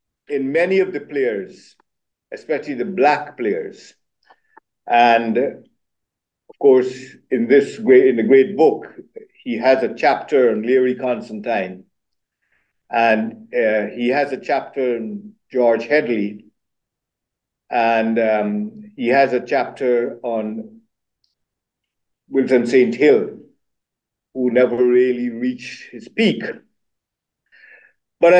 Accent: Indian